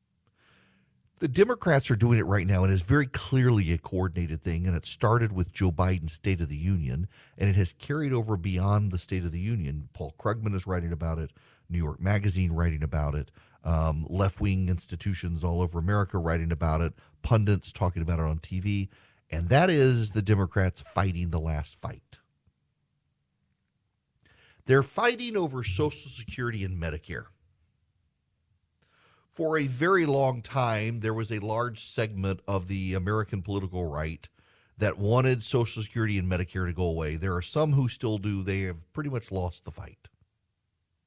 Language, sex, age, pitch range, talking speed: English, male, 40-59, 85-115 Hz, 170 wpm